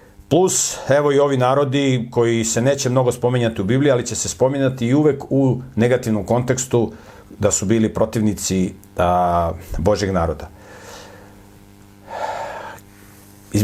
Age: 50-69